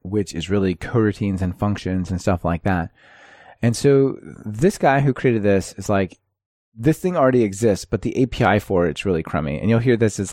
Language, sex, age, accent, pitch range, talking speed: English, male, 20-39, American, 90-115 Hz, 205 wpm